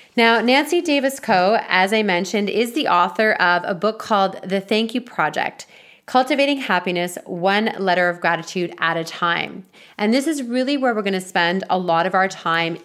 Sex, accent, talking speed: female, American, 190 wpm